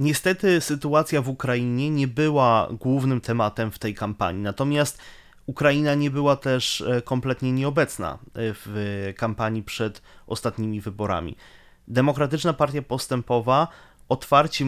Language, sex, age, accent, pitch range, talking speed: Ukrainian, male, 30-49, Polish, 120-140 Hz, 110 wpm